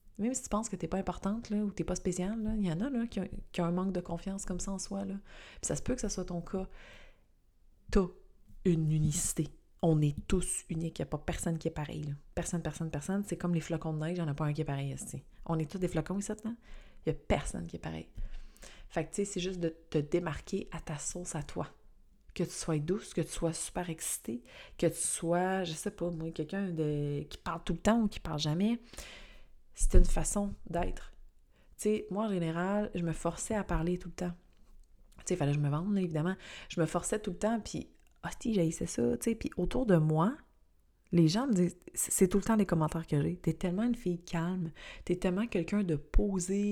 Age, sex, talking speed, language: 30-49, female, 250 wpm, French